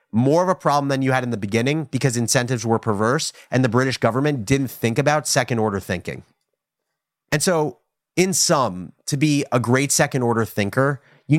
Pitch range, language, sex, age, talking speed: 110-145 Hz, English, male, 30-49, 180 wpm